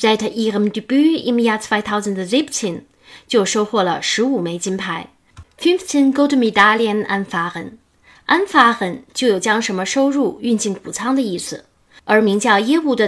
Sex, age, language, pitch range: female, 10-29, Chinese, 195-260 Hz